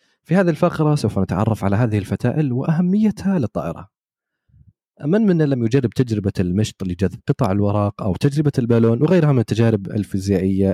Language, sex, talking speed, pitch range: Arabic, male, 145 wpm, 95-130 Hz